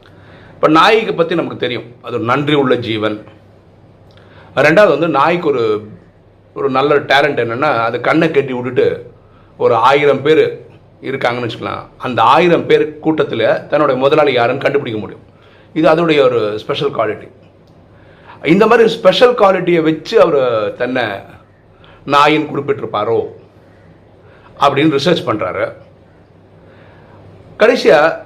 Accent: native